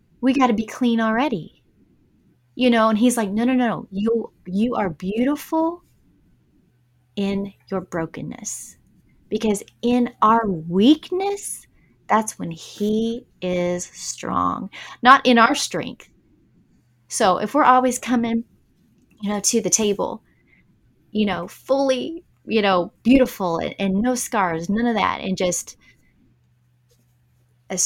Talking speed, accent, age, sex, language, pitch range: 130 wpm, American, 20-39, female, English, 175-240 Hz